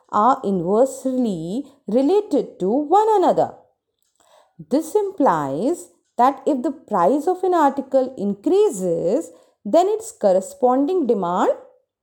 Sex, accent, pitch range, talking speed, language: female, native, 200-275 Hz, 100 wpm, Hindi